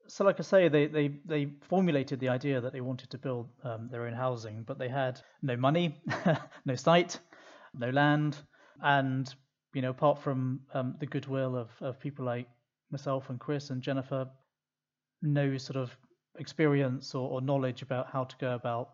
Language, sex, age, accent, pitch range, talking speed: English, male, 40-59, British, 125-150 Hz, 175 wpm